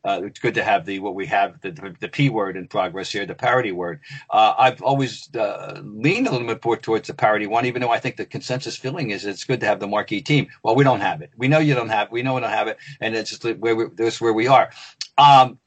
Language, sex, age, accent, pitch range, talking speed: English, male, 50-69, American, 120-155 Hz, 285 wpm